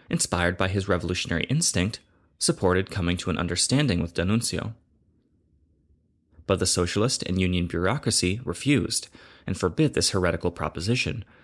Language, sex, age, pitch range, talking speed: English, male, 30-49, 85-105 Hz, 125 wpm